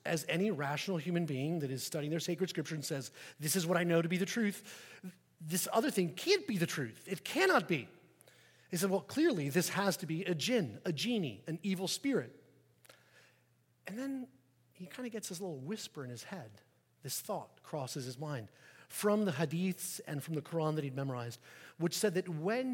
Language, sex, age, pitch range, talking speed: English, male, 40-59, 145-195 Hz, 205 wpm